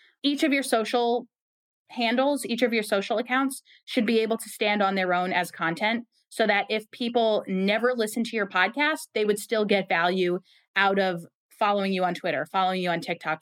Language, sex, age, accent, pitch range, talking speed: English, female, 20-39, American, 185-245 Hz, 195 wpm